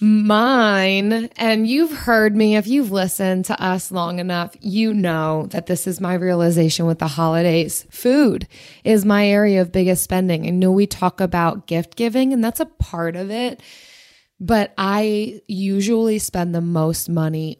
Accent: American